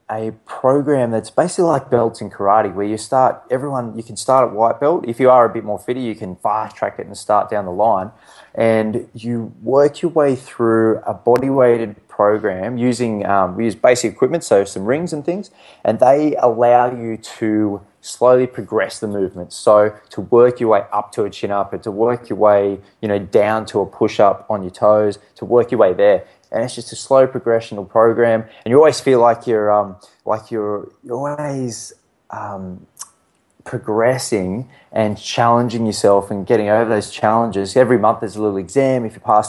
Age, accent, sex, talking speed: 20-39, Australian, male, 200 wpm